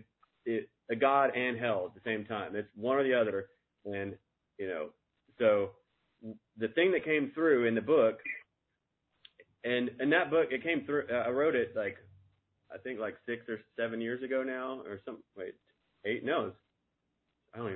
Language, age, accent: English, 30-49, American